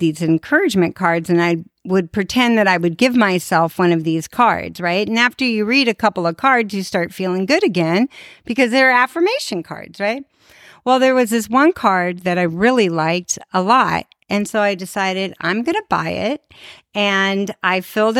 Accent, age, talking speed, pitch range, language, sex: American, 40-59, 195 wpm, 180-255 Hz, English, female